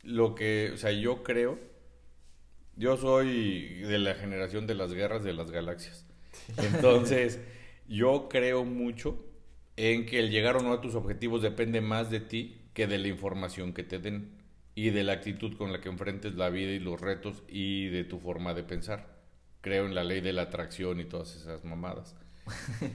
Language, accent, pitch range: Spanish, Mexican, 90-115 Hz